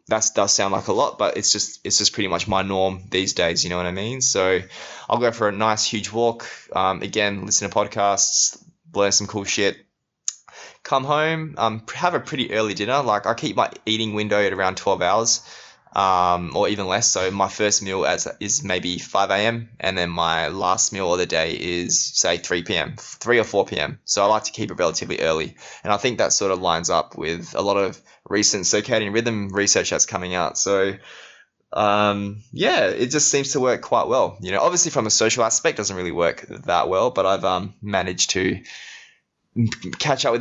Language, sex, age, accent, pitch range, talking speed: English, male, 20-39, Australian, 95-115 Hz, 215 wpm